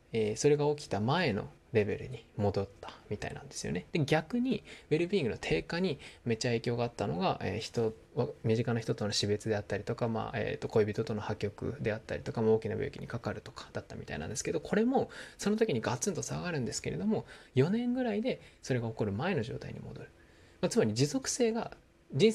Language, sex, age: Japanese, male, 20-39